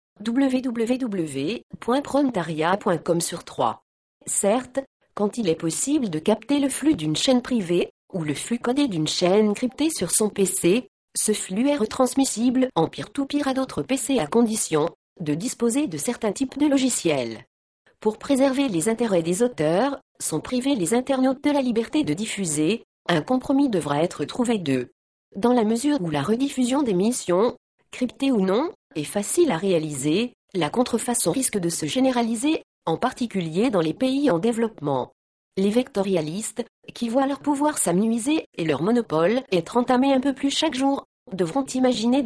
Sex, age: female, 50-69